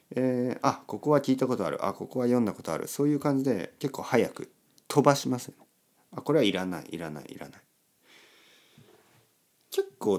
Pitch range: 115-170 Hz